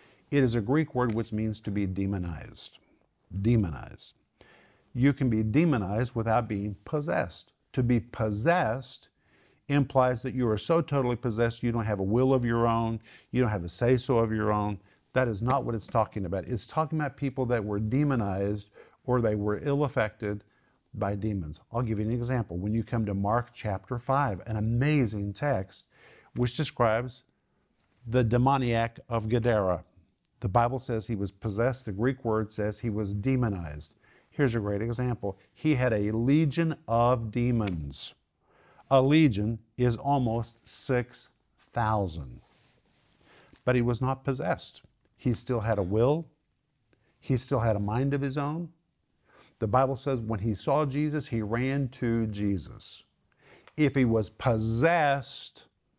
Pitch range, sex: 105-130 Hz, male